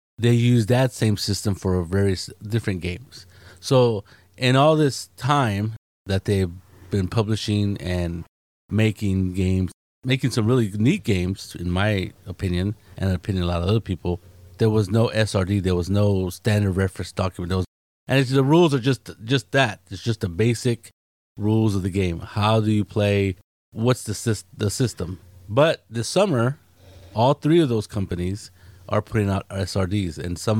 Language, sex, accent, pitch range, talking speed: English, male, American, 90-110 Hz, 175 wpm